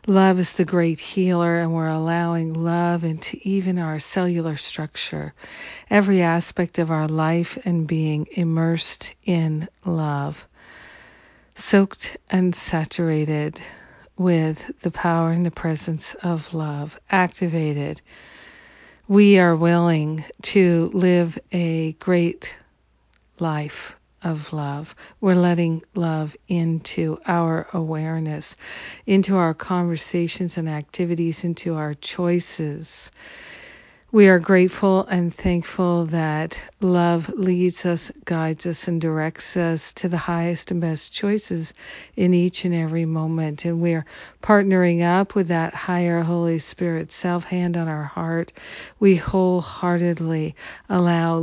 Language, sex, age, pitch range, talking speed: English, female, 50-69, 160-180 Hz, 120 wpm